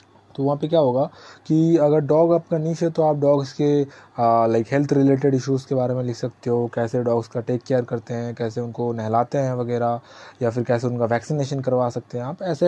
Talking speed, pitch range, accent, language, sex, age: 225 wpm, 125-165 Hz, native, Hindi, male, 20-39